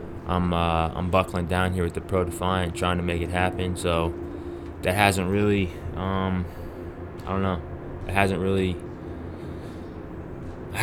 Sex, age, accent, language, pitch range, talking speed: male, 20-39, American, English, 85-95 Hz, 150 wpm